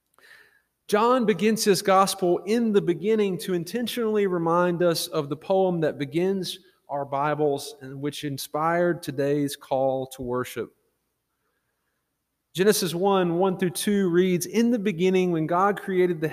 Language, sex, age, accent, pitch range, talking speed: English, male, 30-49, American, 165-220 Hz, 130 wpm